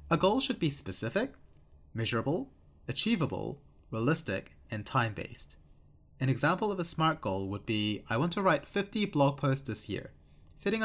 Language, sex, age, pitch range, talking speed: English, male, 30-49, 100-160 Hz, 155 wpm